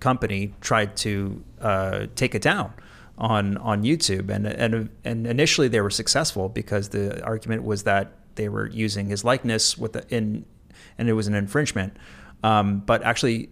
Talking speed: 170 wpm